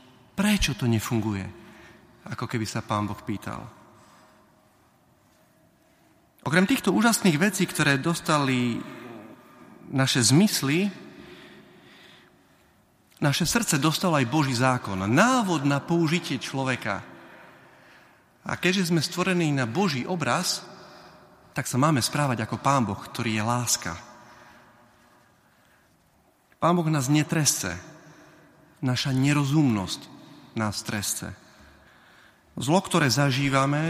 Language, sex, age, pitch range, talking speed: Slovak, male, 40-59, 120-165 Hz, 95 wpm